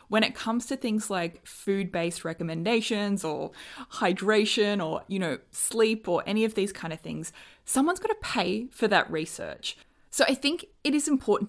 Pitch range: 170-210 Hz